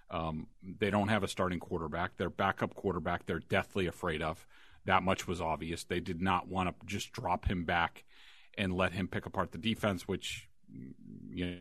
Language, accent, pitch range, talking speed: English, American, 95-115 Hz, 185 wpm